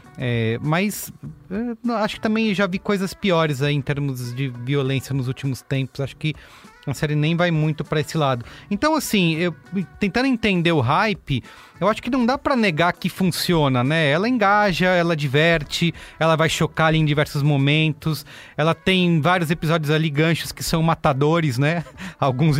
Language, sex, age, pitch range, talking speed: English, male, 30-49, 145-195 Hz, 175 wpm